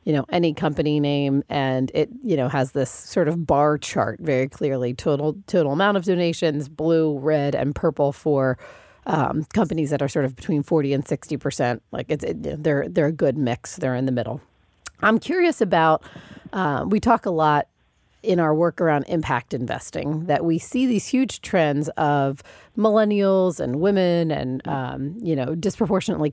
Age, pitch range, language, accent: 40-59, 140-185 Hz, English, American